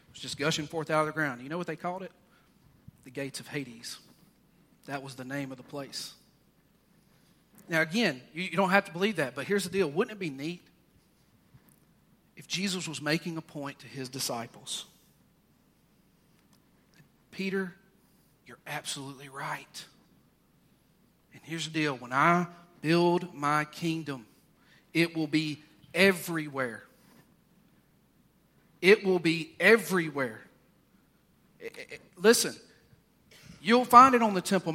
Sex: male